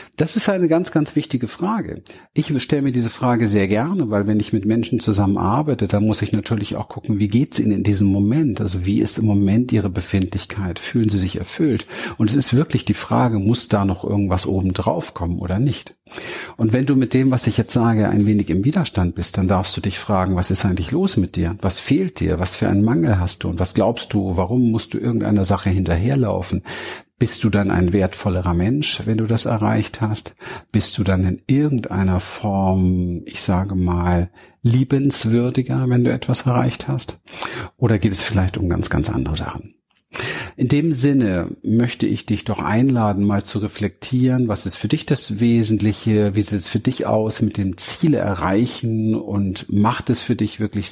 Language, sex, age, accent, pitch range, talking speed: German, male, 50-69, German, 100-120 Hz, 200 wpm